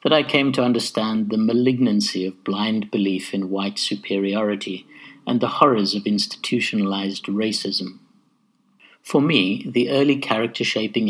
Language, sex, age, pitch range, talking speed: English, male, 60-79, 100-125 Hz, 135 wpm